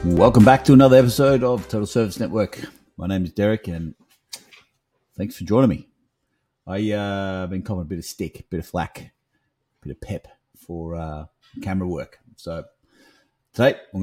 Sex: male